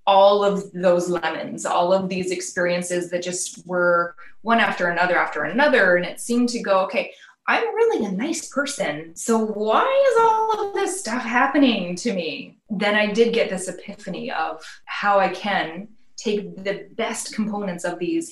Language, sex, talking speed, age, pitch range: English, female, 175 wpm, 20-39, 180-230 Hz